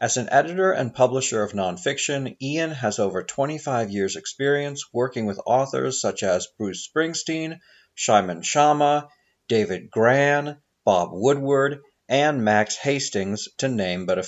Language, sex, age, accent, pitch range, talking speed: English, male, 40-59, American, 110-145 Hz, 140 wpm